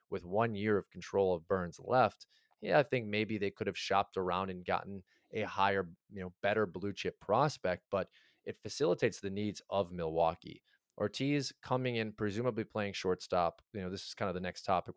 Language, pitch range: English, 90-110 Hz